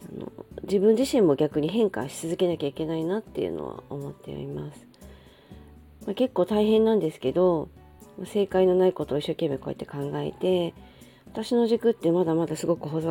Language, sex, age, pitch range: Japanese, female, 40-59, 140-185 Hz